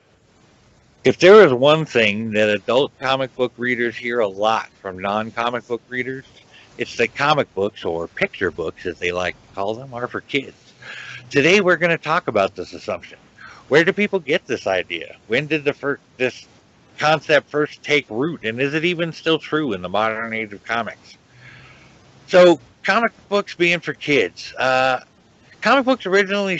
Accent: American